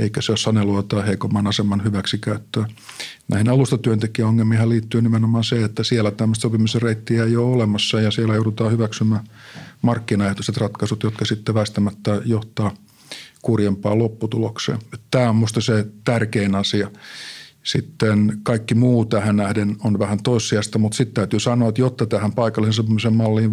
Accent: native